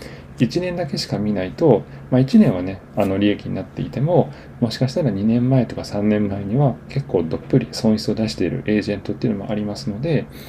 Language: Japanese